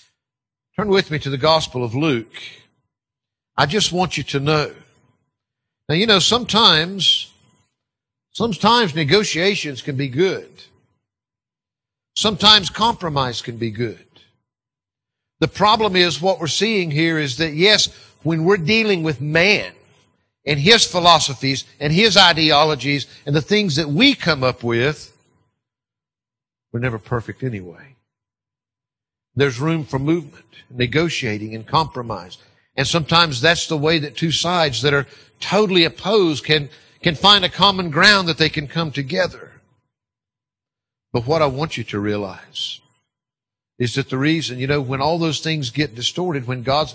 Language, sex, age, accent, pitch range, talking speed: English, male, 50-69, American, 125-165 Hz, 145 wpm